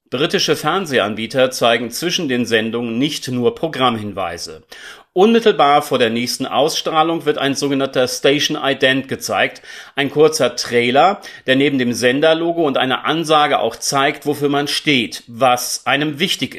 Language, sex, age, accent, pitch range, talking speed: German, male, 40-59, German, 125-165 Hz, 135 wpm